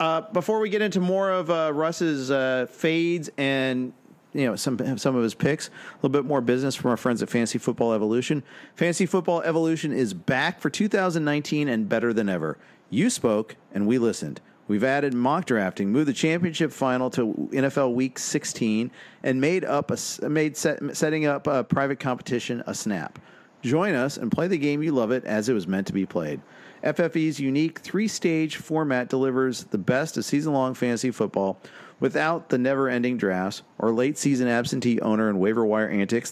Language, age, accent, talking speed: English, 40-59, American, 185 wpm